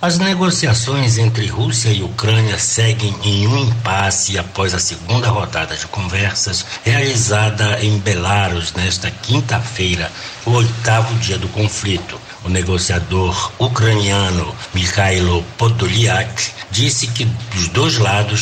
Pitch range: 95-115 Hz